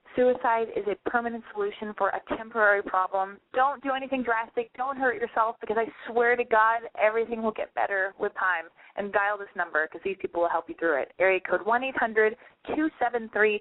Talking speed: 210 wpm